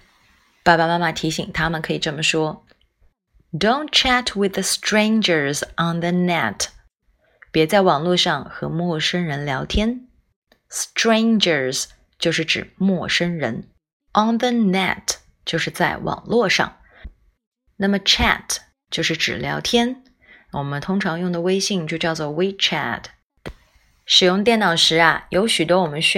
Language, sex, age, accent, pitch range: Chinese, female, 20-39, native, 160-205 Hz